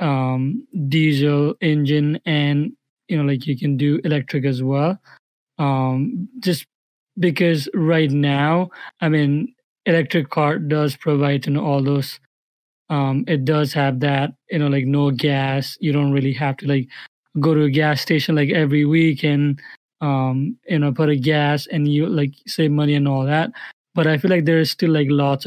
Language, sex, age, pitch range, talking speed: English, male, 20-39, 140-160 Hz, 175 wpm